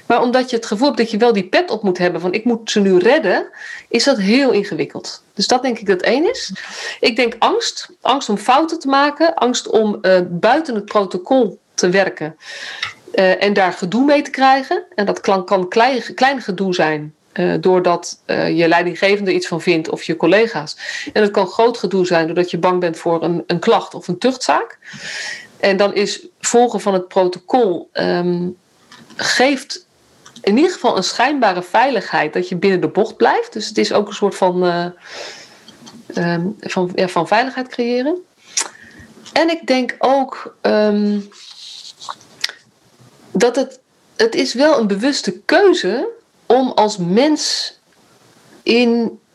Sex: female